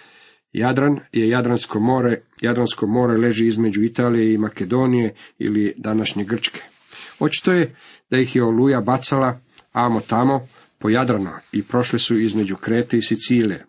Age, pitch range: 50-69, 110-130 Hz